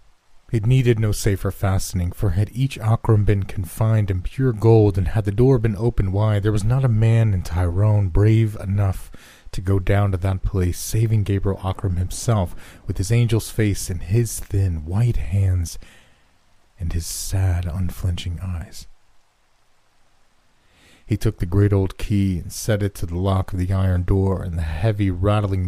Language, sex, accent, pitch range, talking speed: English, male, American, 90-105 Hz, 175 wpm